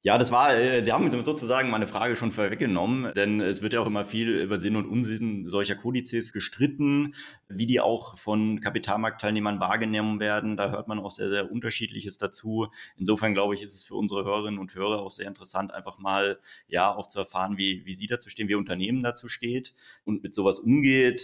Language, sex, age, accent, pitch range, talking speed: German, male, 30-49, German, 95-110 Hz, 205 wpm